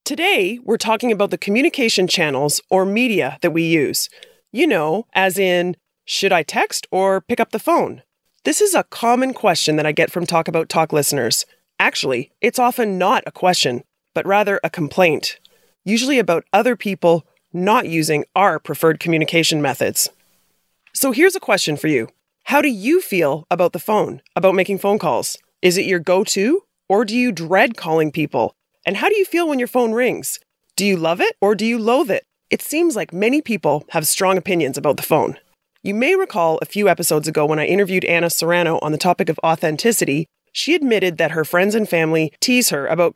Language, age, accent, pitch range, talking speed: English, 30-49, American, 165-235 Hz, 195 wpm